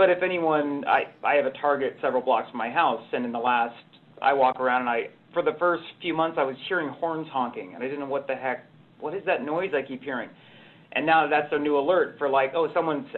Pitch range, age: 130-160 Hz, 40-59